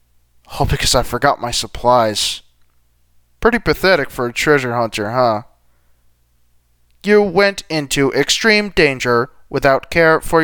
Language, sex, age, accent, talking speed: English, male, 20-39, American, 120 wpm